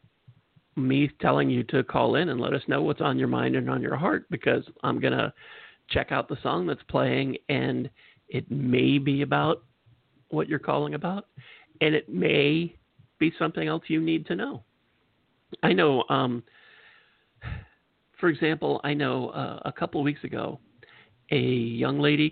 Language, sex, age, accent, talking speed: English, male, 50-69, American, 165 wpm